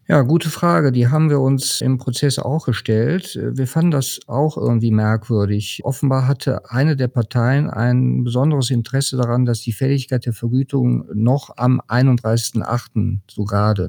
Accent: German